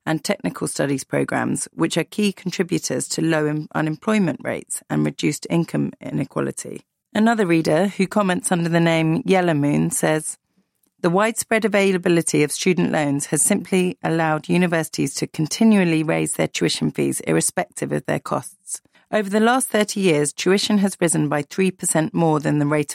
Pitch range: 150-190 Hz